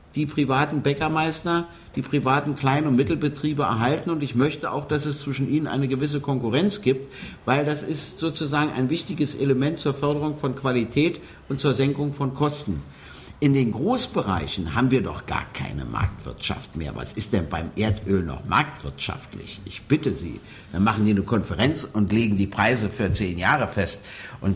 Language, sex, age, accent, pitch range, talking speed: German, male, 50-69, German, 105-150 Hz, 175 wpm